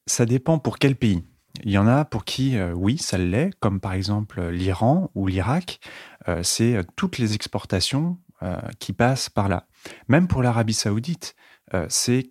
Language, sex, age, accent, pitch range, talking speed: French, male, 30-49, French, 100-125 Hz, 180 wpm